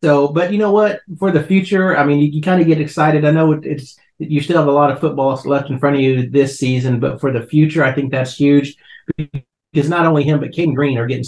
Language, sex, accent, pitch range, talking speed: English, male, American, 130-150 Hz, 270 wpm